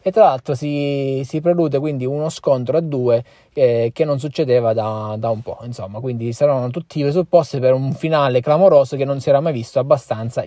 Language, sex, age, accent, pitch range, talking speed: Italian, male, 20-39, native, 125-165 Hz, 205 wpm